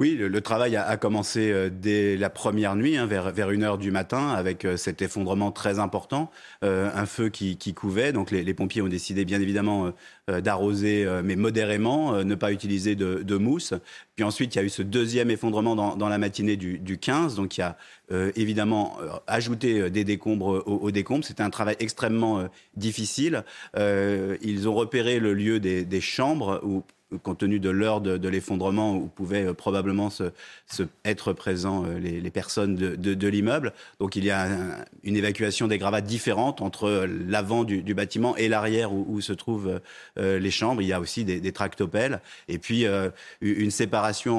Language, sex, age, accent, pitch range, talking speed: French, male, 30-49, French, 95-110 Hz, 200 wpm